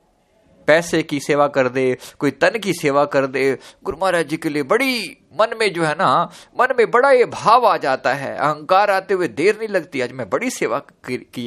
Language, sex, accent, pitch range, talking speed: Hindi, male, native, 130-185 Hz, 215 wpm